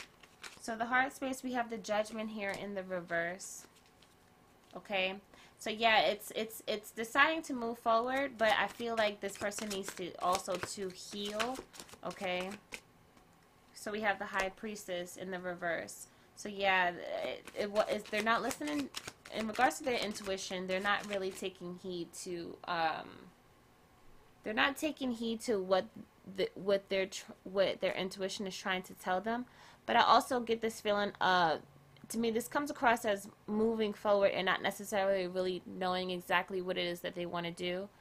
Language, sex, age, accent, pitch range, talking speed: English, female, 20-39, American, 185-225 Hz, 175 wpm